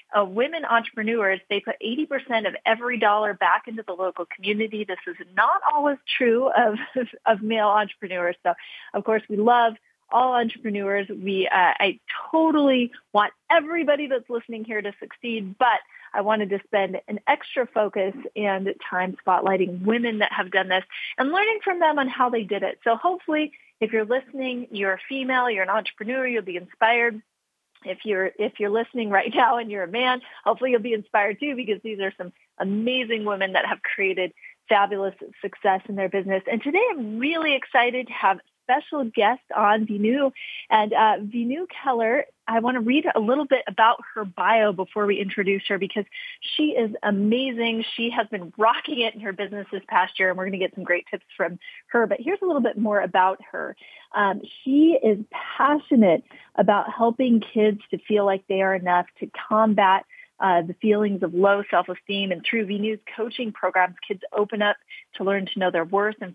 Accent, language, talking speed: American, English, 190 wpm